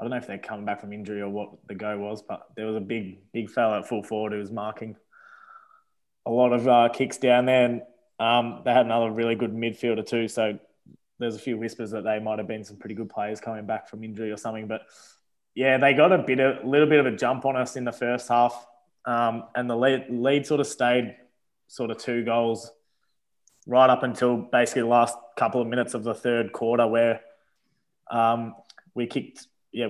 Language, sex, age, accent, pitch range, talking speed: English, male, 20-39, Australian, 110-125 Hz, 225 wpm